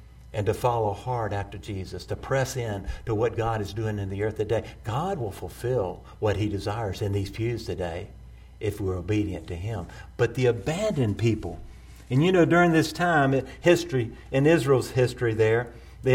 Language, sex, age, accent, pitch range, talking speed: English, male, 50-69, American, 105-140 Hz, 185 wpm